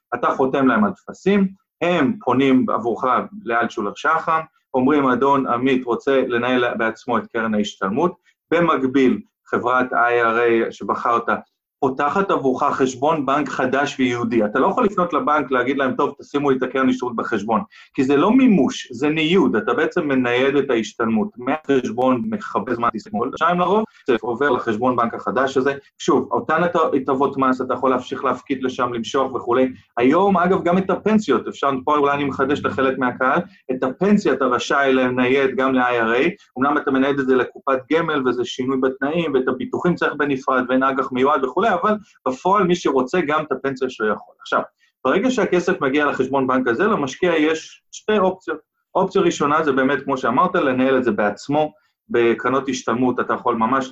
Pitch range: 125-160 Hz